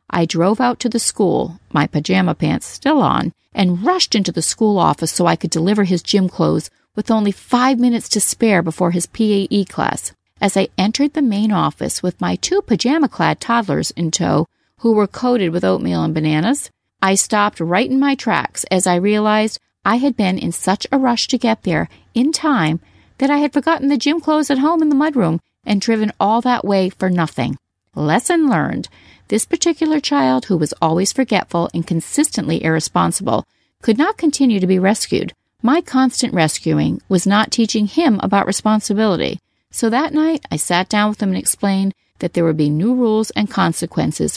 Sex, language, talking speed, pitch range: female, English, 190 wpm, 180-255 Hz